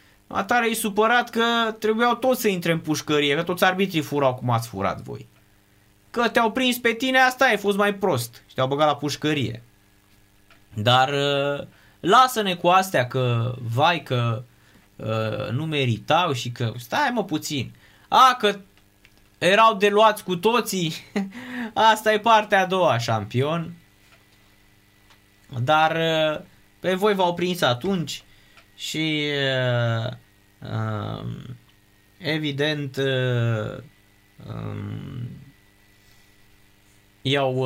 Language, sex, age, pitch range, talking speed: Romanian, male, 20-39, 110-160 Hz, 110 wpm